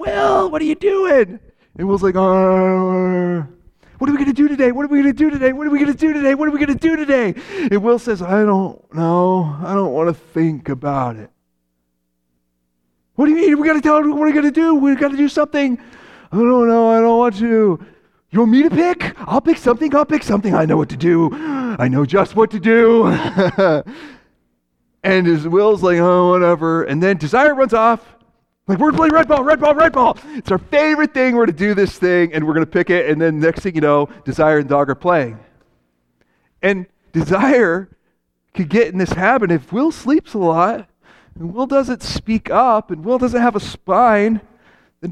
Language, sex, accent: English, male, American